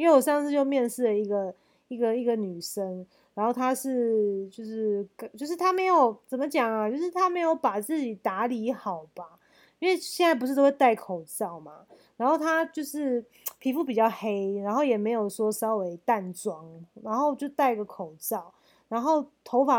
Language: Chinese